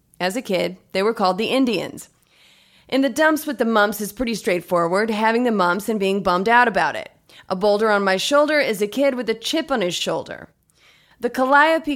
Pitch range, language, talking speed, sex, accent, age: 190-250 Hz, English, 210 wpm, female, American, 30-49